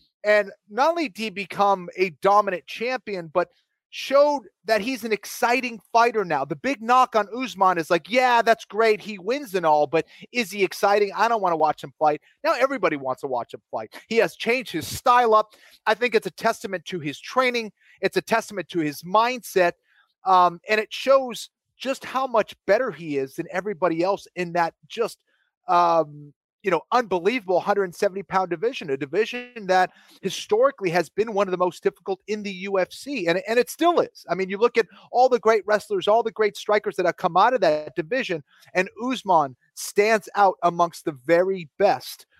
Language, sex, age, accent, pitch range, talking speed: English, male, 30-49, American, 175-225 Hz, 195 wpm